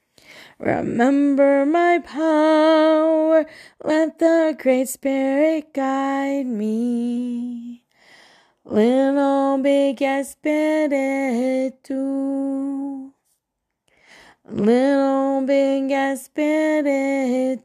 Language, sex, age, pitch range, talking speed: English, female, 30-49, 255-300 Hz, 50 wpm